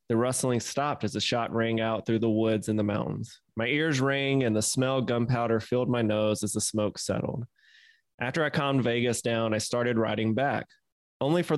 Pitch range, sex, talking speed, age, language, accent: 110-135 Hz, male, 205 wpm, 20-39, English, American